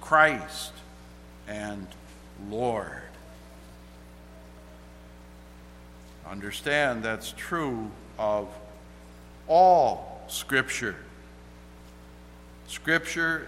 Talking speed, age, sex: 45 wpm, 60-79, male